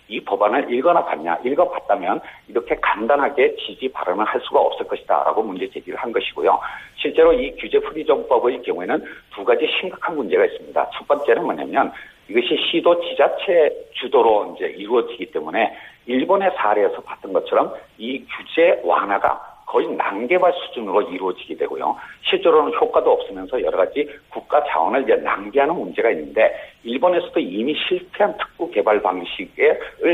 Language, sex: Korean, male